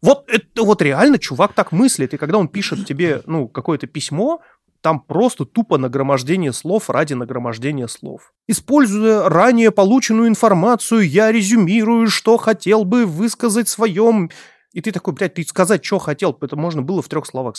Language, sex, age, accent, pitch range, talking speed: Russian, male, 30-49, native, 140-210 Hz, 165 wpm